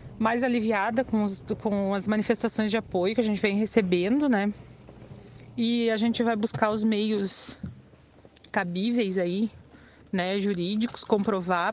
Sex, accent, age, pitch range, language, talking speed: female, Brazilian, 30-49, 185-225 Hz, Portuguese, 140 wpm